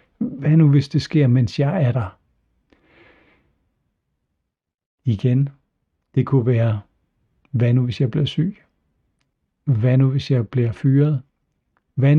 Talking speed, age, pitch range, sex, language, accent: 130 wpm, 60-79, 115-145 Hz, male, Danish, native